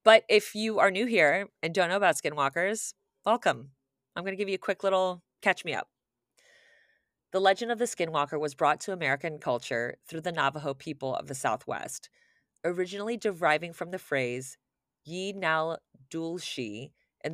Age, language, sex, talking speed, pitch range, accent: 30-49, English, female, 175 wpm, 140-185 Hz, American